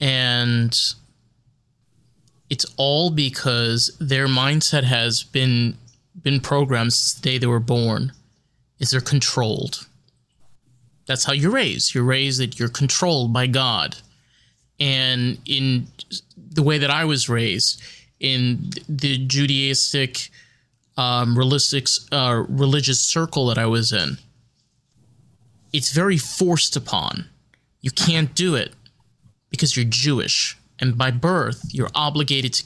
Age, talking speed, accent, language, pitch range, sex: 20-39, 125 wpm, American, English, 125-150 Hz, male